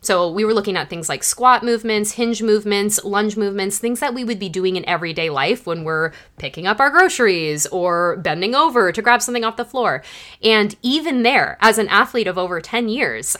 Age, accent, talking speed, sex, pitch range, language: 20-39, American, 210 wpm, female, 175-225 Hz, English